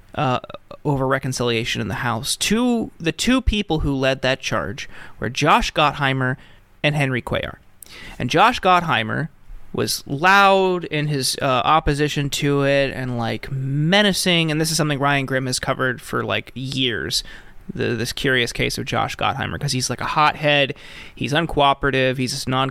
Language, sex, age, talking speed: English, male, 30-49, 160 wpm